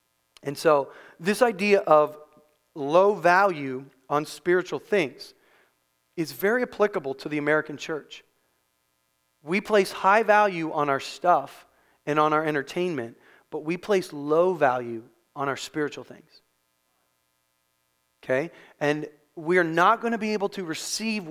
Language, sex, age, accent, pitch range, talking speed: English, male, 30-49, American, 145-200 Hz, 130 wpm